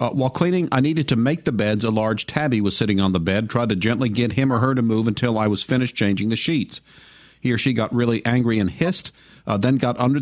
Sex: male